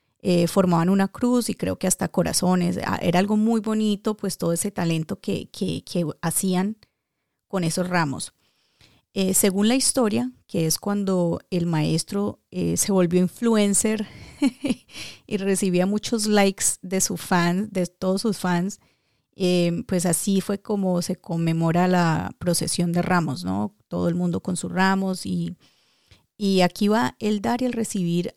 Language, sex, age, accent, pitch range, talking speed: Spanish, female, 30-49, Colombian, 175-205 Hz, 160 wpm